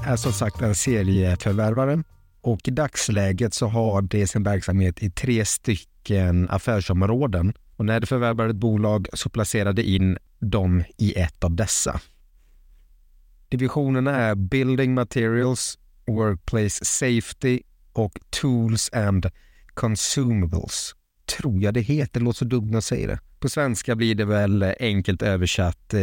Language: Swedish